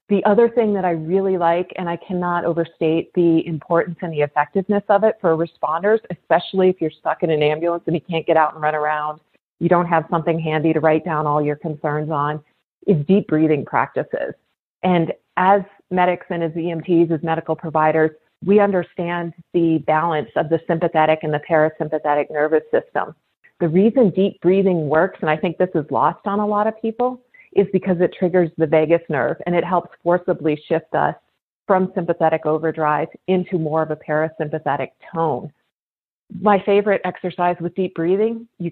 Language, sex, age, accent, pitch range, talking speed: English, female, 40-59, American, 160-190 Hz, 180 wpm